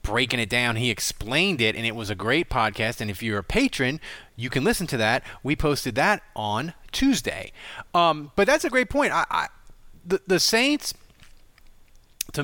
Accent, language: American, English